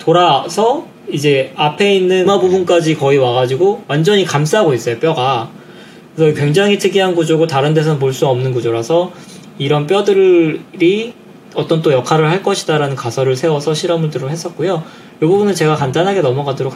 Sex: male